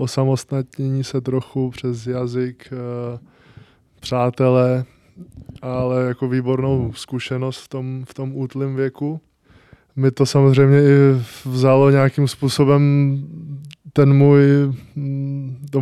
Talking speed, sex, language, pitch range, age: 100 wpm, male, Czech, 125-140 Hz, 20-39